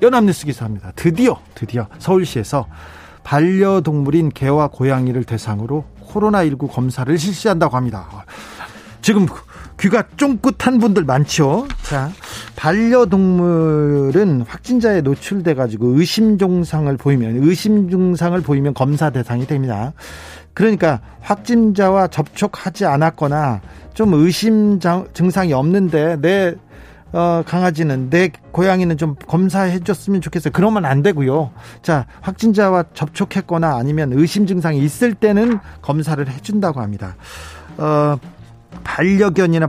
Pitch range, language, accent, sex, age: 135-190 Hz, Korean, native, male, 40-59